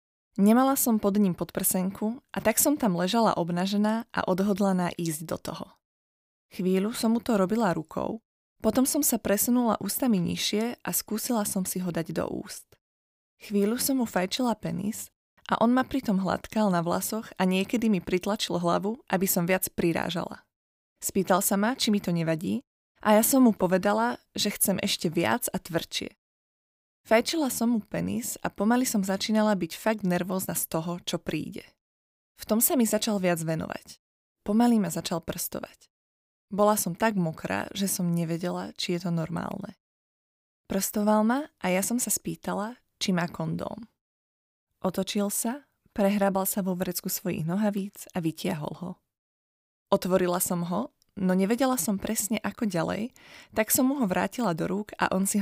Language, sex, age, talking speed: Slovak, female, 20-39, 165 wpm